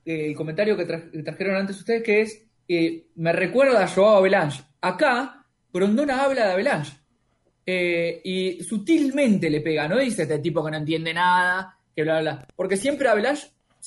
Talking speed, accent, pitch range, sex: 180 wpm, Argentinian, 155-215 Hz, male